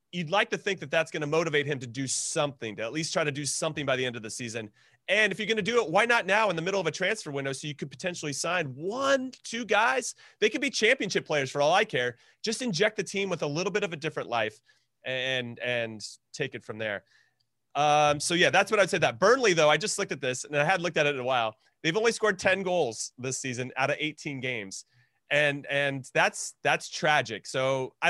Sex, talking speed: male, 255 wpm